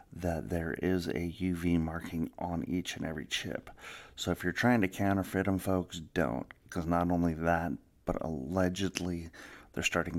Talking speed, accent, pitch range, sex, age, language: 165 wpm, American, 80-90 Hz, male, 40-59, English